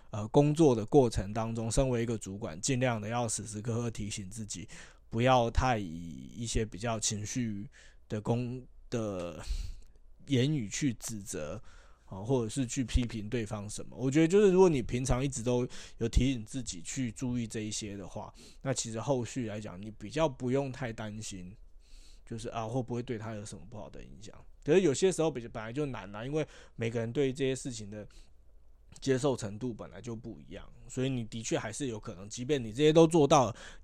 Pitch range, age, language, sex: 105-130 Hz, 20-39, Chinese, male